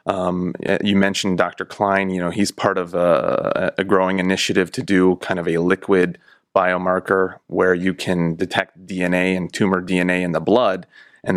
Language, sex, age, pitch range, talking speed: English, male, 30-49, 90-95 Hz, 175 wpm